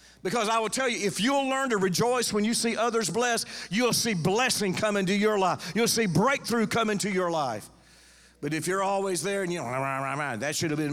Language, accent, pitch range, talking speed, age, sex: English, American, 145-185 Hz, 245 wpm, 50-69, male